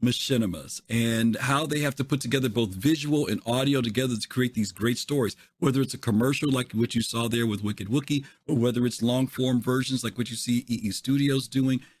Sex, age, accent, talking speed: male, 50-69, American, 210 wpm